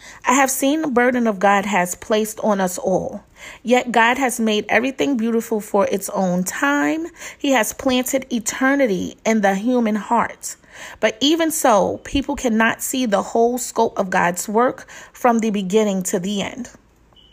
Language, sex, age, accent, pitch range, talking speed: English, female, 30-49, American, 190-245 Hz, 165 wpm